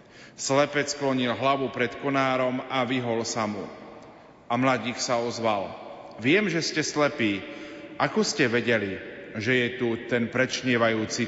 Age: 40-59